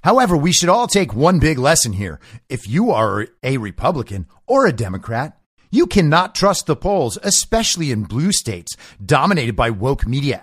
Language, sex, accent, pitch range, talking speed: English, male, American, 125-190 Hz, 175 wpm